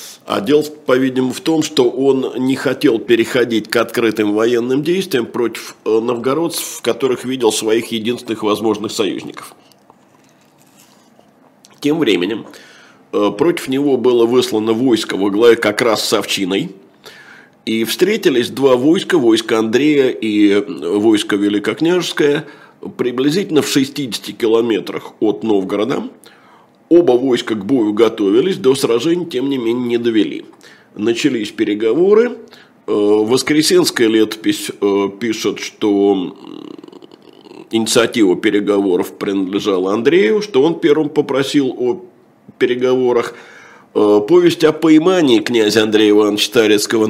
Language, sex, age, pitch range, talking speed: Russian, male, 50-69, 110-175 Hz, 110 wpm